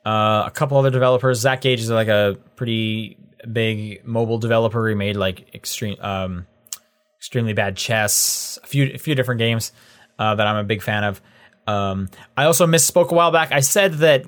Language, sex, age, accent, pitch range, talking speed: English, male, 20-39, American, 115-155 Hz, 180 wpm